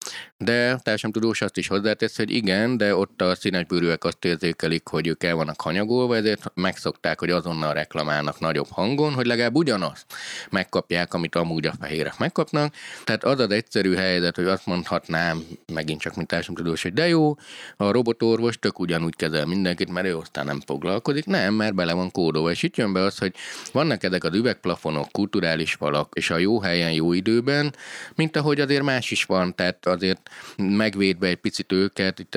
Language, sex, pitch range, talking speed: Hungarian, male, 80-110 Hz, 180 wpm